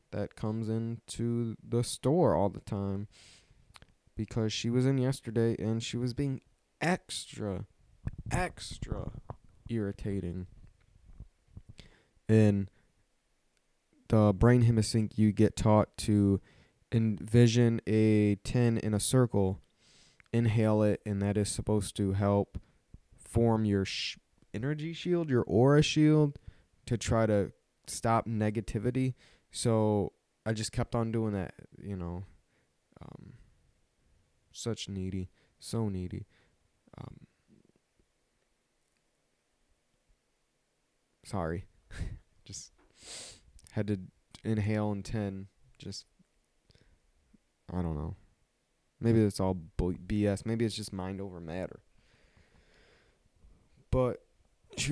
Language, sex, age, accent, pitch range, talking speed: English, male, 20-39, American, 100-115 Hz, 100 wpm